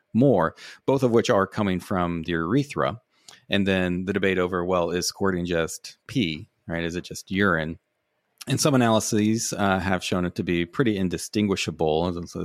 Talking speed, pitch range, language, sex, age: 170 wpm, 85-105 Hz, English, male, 30-49